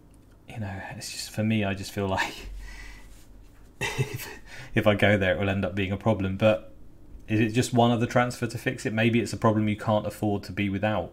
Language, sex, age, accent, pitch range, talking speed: English, male, 30-49, British, 100-115 Hz, 230 wpm